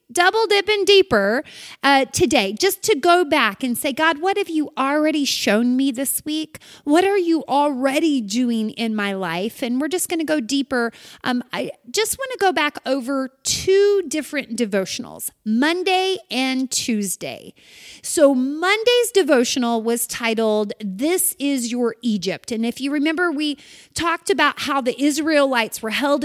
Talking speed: 160 wpm